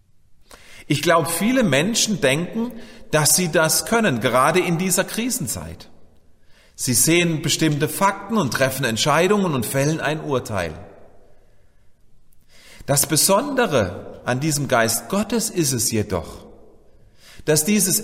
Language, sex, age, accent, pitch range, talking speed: German, male, 40-59, German, 125-185 Hz, 115 wpm